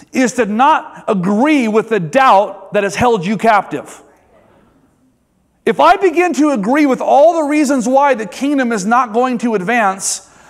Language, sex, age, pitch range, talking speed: English, male, 30-49, 225-285 Hz, 165 wpm